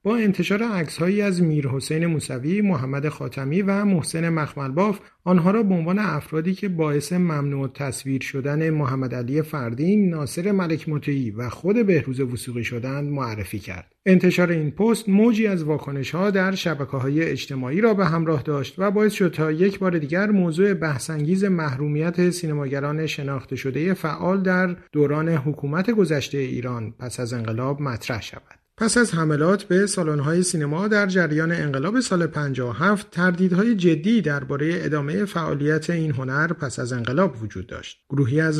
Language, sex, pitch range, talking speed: Persian, male, 140-185 Hz, 155 wpm